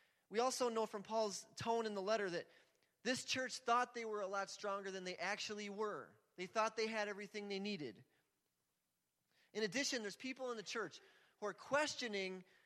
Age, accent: 30-49, American